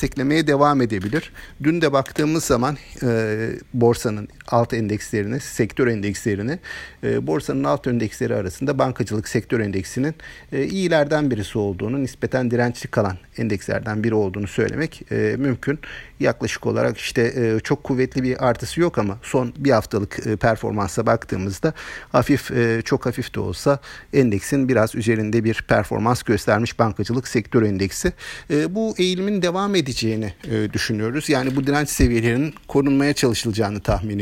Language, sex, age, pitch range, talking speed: Turkish, male, 50-69, 105-140 Hz, 125 wpm